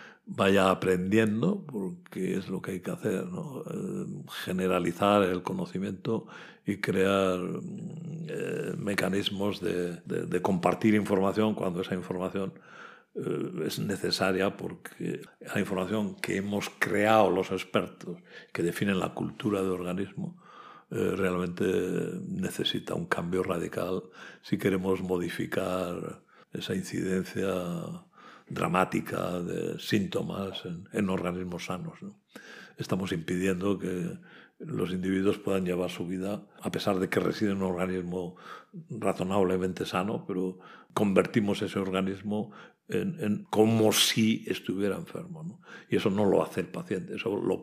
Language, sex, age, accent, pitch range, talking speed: Spanish, male, 60-79, Spanish, 90-110 Hz, 125 wpm